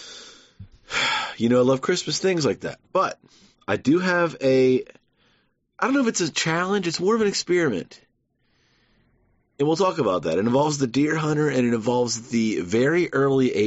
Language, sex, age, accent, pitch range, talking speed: English, male, 30-49, American, 105-165 Hz, 180 wpm